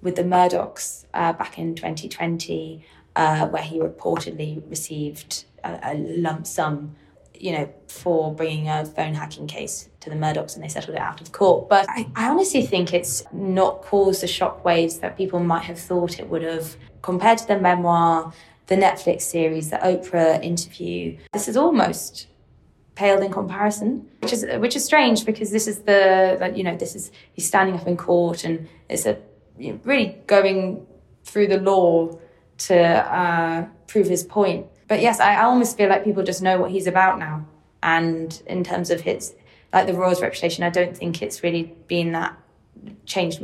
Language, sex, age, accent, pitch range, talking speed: English, female, 20-39, British, 165-195 Hz, 180 wpm